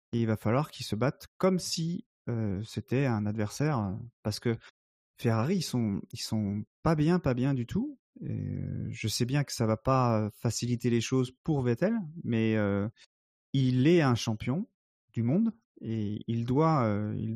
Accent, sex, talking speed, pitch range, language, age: French, male, 190 wpm, 110-160 Hz, French, 30-49